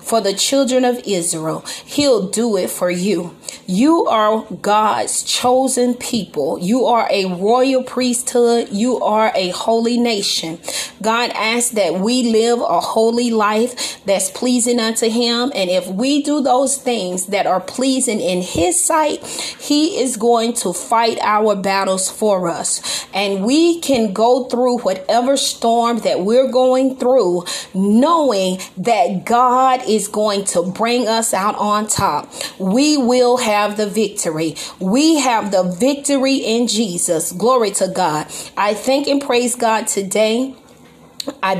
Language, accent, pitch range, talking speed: English, American, 195-250 Hz, 145 wpm